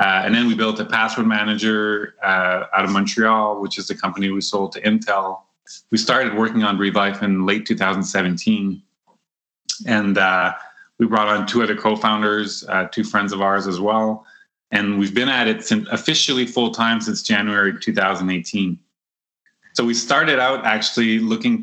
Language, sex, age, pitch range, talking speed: English, male, 30-49, 95-110 Hz, 160 wpm